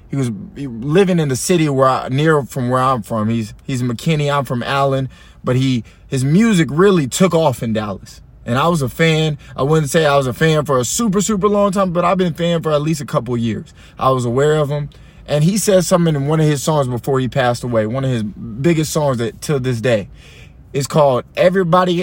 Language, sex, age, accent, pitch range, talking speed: English, male, 20-39, American, 125-180 Hz, 240 wpm